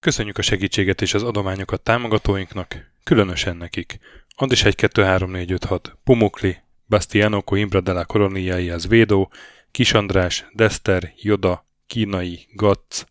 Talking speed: 100 wpm